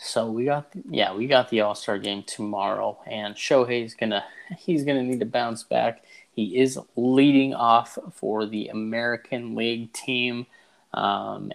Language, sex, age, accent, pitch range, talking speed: English, male, 20-39, American, 110-150 Hz, 160 wpm